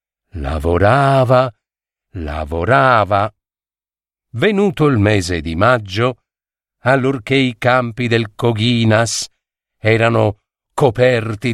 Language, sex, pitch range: Italian, male, 100-135 Hz